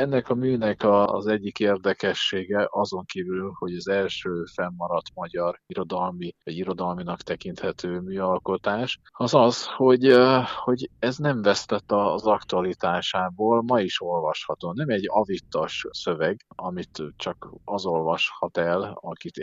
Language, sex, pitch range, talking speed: Hungarian, male, 90-110 Hz, 125 wpm